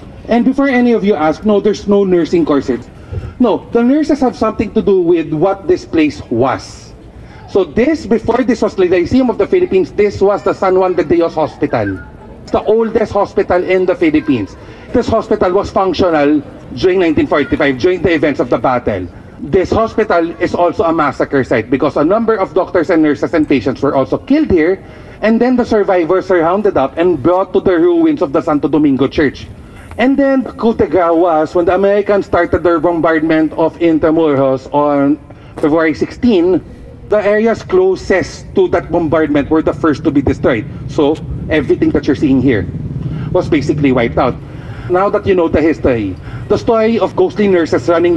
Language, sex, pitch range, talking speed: Filipino, male, 155-220 Hz, 180 wpm